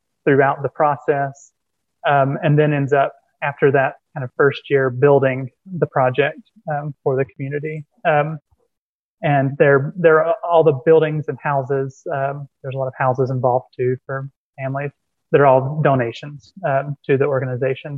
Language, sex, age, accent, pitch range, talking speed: English, male, 20-39, American, 135-155 Hz, 165 wpm